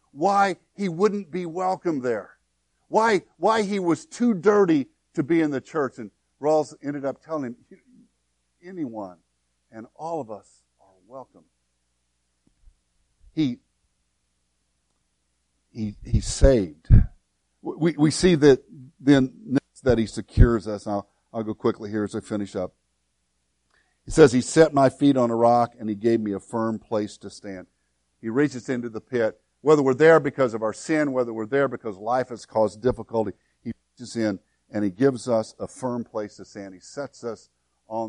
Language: English